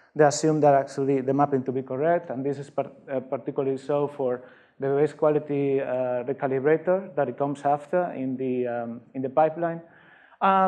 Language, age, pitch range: English, 30-49, 130-160 Hz